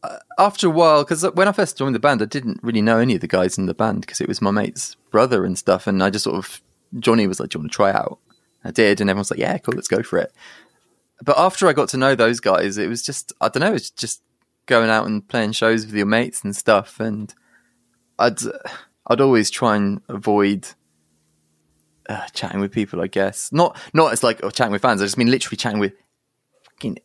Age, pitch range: 20-39, 100-135 Hz